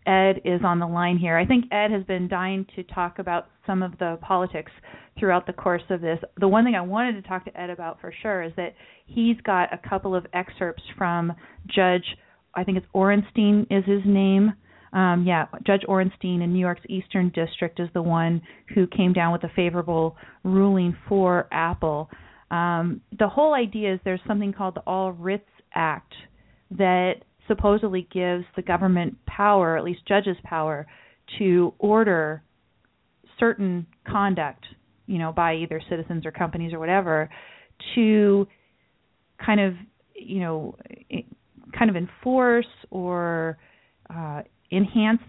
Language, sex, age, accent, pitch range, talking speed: English, female, 30-49, American, 175-205 Hz, 160 wpm